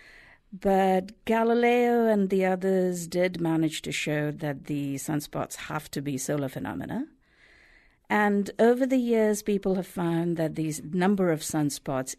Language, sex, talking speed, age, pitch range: English, female, 145 wpm, 50-69, 145-185 Hz